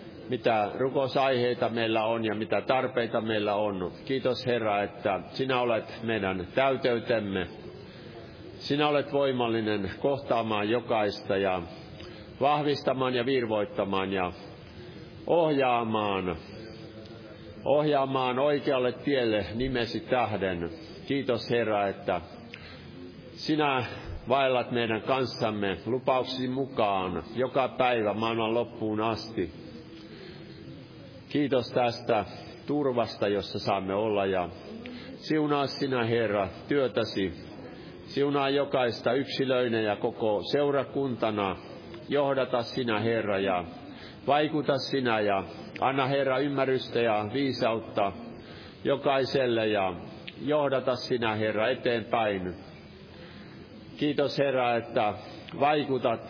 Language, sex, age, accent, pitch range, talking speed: Finnish, male, 50-69, native, 105-135 Hz, 90 wpm